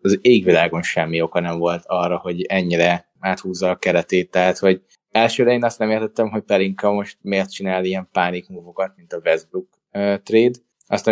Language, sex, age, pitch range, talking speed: Hungarian, male, 20-39, 90-110 Hz, 175 wpm